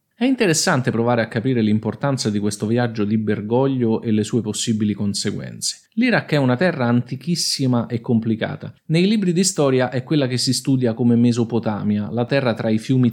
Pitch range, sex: 115-145 Hz, male